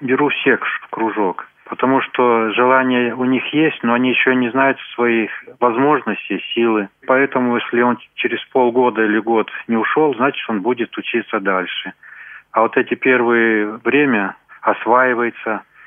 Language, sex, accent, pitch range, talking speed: Russian, male, native, 105-125 Hz, 145 wpm